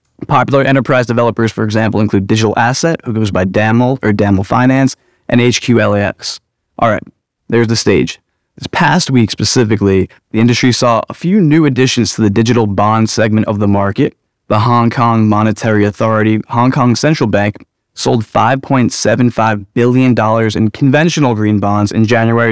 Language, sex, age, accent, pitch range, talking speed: English, male, 20-39, American, 105-125 Hz, 155 wpm